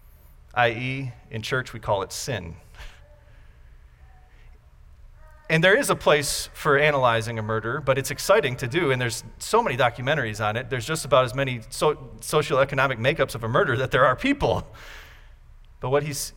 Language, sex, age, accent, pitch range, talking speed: English, male, 40-59, American, 110-150 Hz, 170 wpm